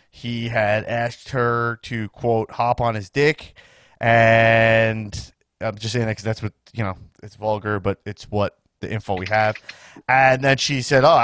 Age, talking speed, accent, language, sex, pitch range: 30-49, 180 wpm, American, English, male, 105-130 Hz